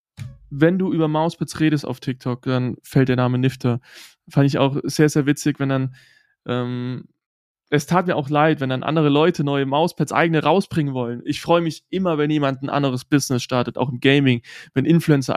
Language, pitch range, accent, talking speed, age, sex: German, 135-165 Hz, German, 195 wpm, 20-39, male